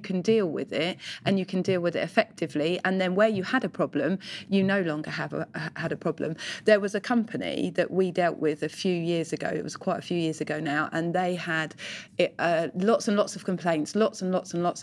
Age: 30-49